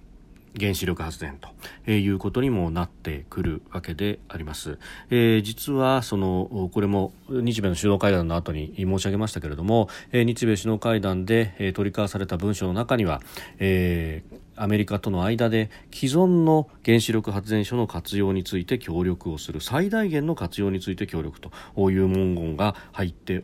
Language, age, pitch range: Japanese, 40-59, 90-115 Hz